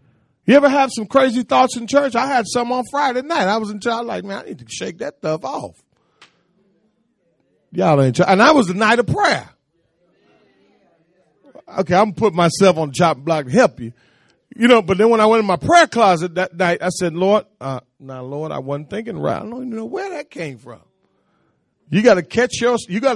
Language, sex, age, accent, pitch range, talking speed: English, male, 40-59, American, 175-245 Hz, 225 wpm